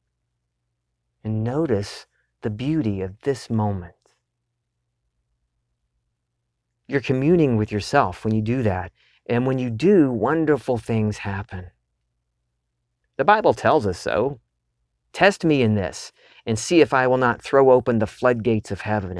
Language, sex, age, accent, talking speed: English, male, 40-59, American, 135 wpm